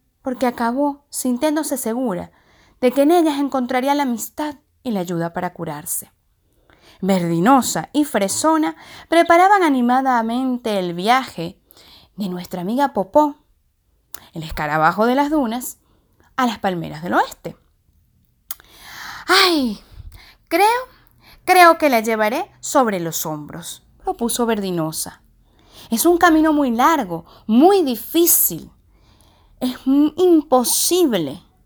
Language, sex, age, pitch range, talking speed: Spanish, female, 20-39, 180-290 Hz, 110 wpm